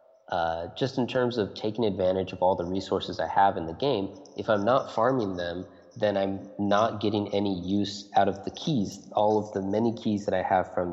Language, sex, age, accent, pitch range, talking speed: English, male, 20-39, American, 90-110 Hz, 220 wpm